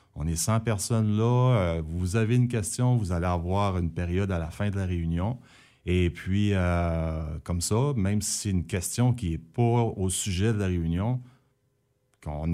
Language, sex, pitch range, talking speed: French, male, 85-125 Hz, 185 wpm